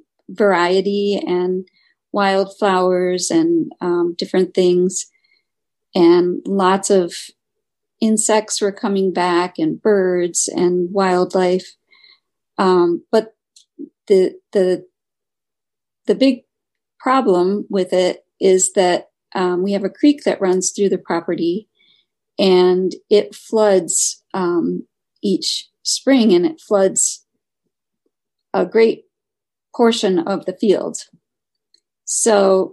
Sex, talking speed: female, 100 wpm